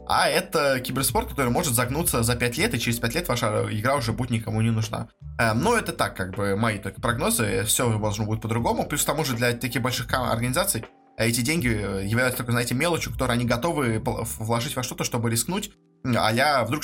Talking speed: 205 wpm